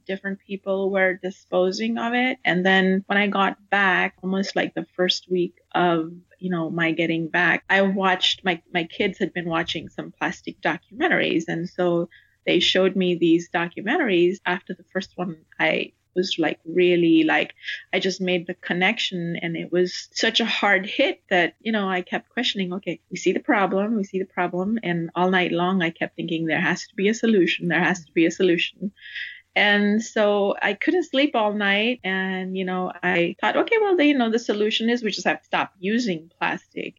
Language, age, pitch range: English, 30-49, 175-210 Hz